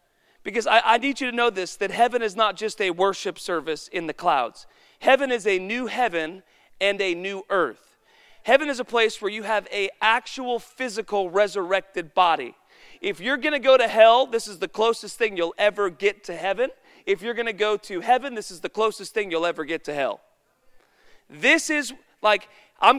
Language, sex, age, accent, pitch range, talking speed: English, male, 40-59, American, 195-240 Hz, 200 wpm